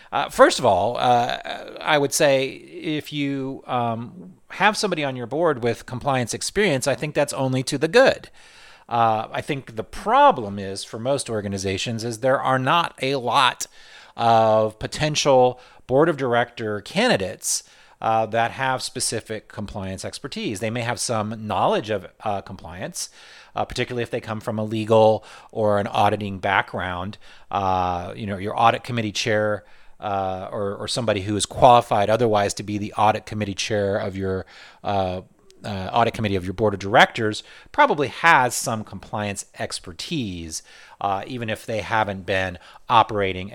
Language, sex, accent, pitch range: English, male, American, 100-130 Hz